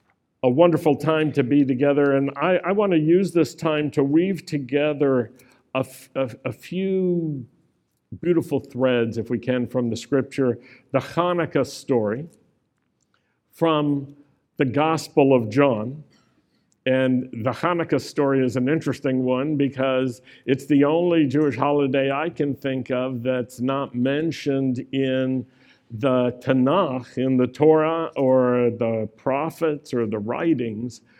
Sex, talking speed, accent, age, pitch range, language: male, 135 wpm, American, 60-79, 130-150 Hz, English